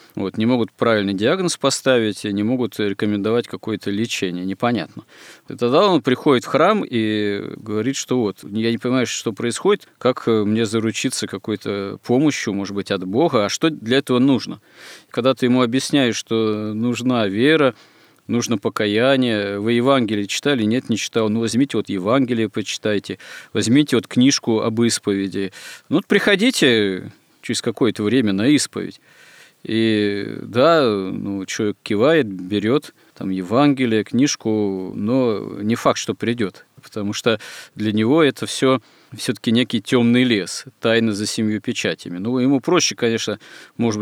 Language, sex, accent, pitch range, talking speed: Russian, male, native, 105-125 Hz, 140 wpm